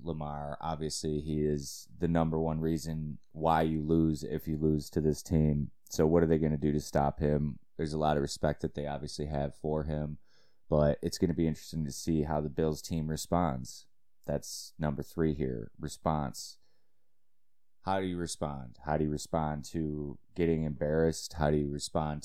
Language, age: English, 20-39